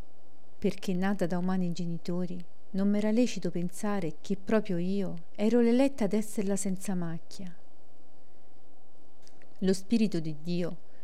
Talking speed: 120 wpm